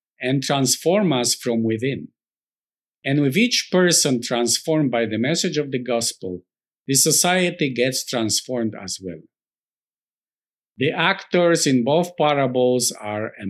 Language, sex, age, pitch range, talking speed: English, male, 50-69, 115-155 Hz, 130 wpm